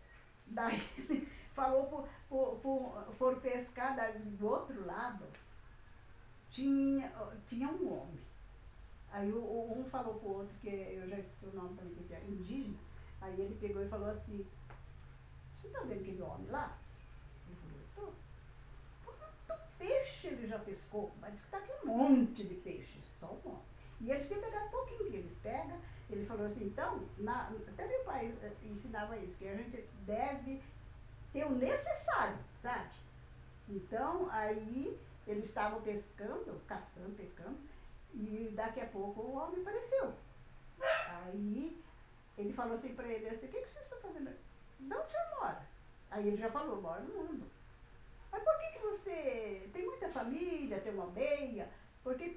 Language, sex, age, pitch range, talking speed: Portuguese, female, 50-69, 205-310 Hz, 160 wpm